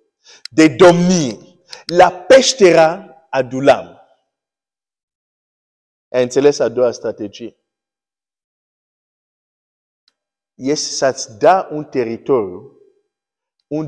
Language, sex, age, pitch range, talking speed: Romanian, male, 50-69, 135-225 Hz, 70 wpm